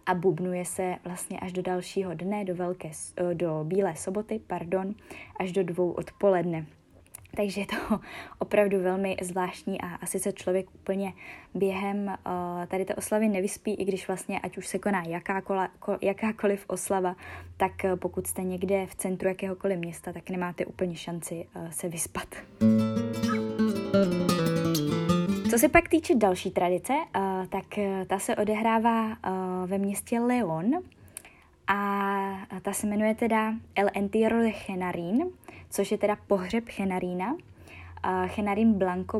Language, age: Czech, 20-39